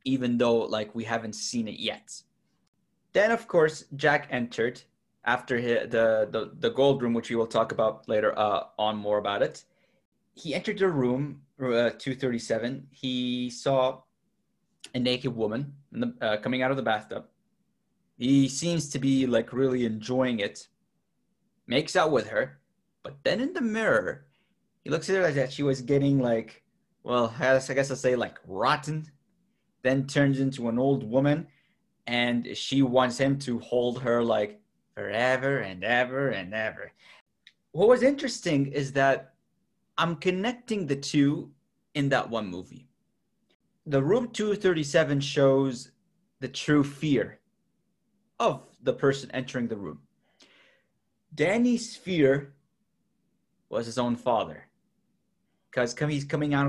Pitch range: 120-165 Hz